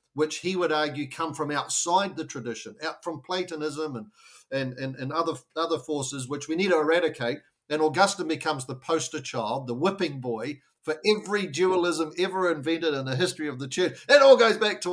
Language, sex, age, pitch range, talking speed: English, male, 50-69, 130-165 Hz, 195 wpm